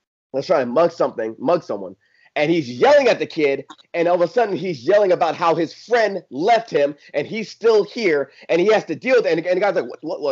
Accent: American